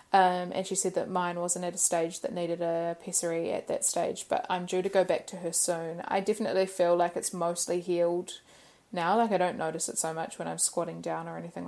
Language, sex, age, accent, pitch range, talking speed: English, female, 20-39, Australian, 170-190 Hz, 240 wpm